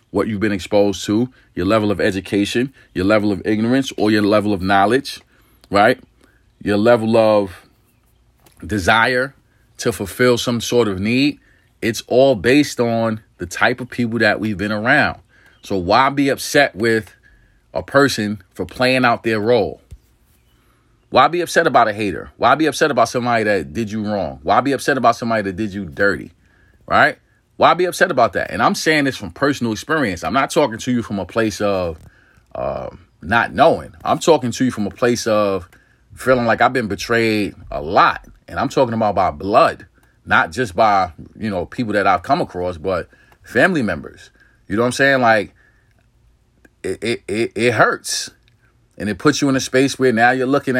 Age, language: 40-59, English